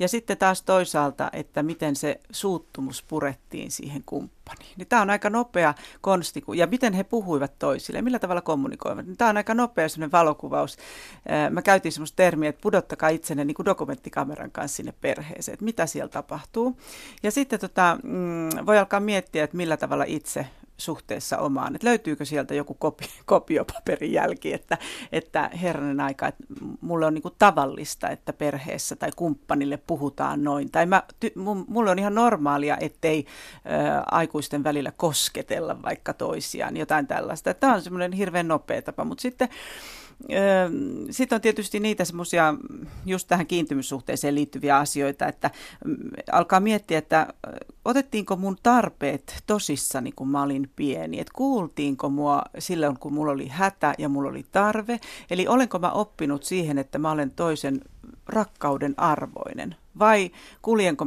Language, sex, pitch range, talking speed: Finnish, female, 145-210 Hz, 150 wpm